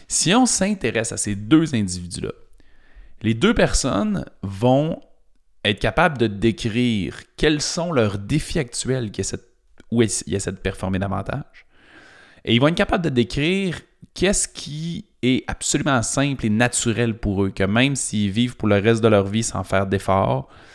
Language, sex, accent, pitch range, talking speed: French, male, Canadian, 95-115 Hz, 160 wpm